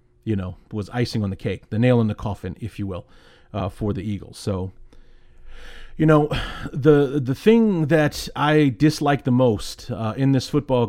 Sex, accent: male, American